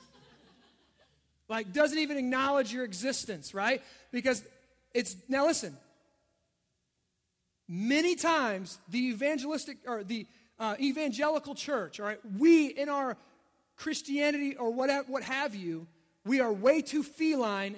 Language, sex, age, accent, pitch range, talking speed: English, male, 30-49, American, 240-315 Hz, 120 wpm